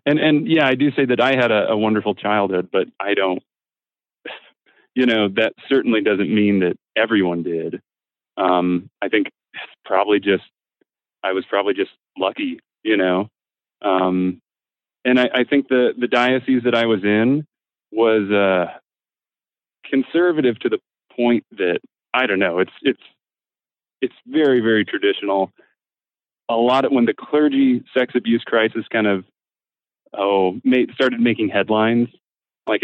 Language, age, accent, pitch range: English, 30-49, American, 100-125 Hz